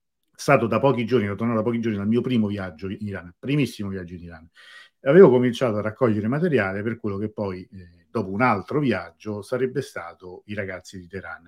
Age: 50-69